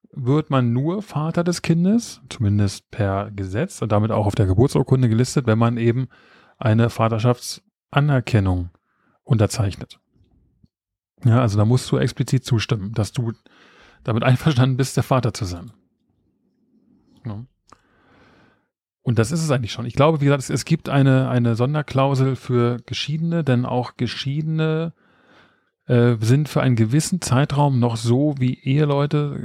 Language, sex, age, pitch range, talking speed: German, male, 30-49, 105-135 Hz, 135 wpm